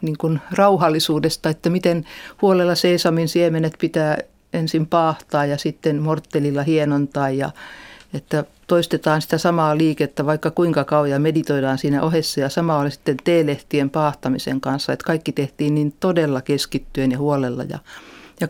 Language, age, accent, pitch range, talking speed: Finnish, 50-69, native, 145-175 Hz, 145 wpm